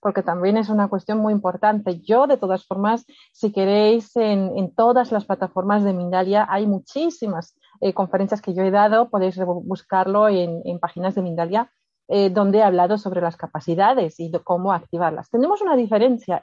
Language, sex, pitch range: Spanish, female, 190-235 Hz